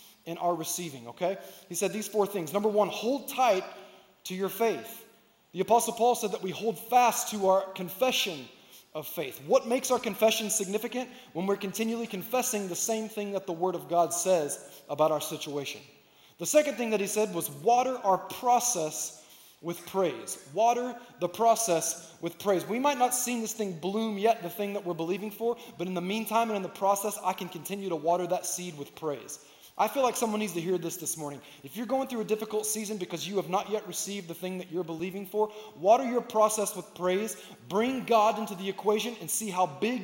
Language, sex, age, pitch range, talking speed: English, male, 20-39, 170-220 Hz, 215 wpm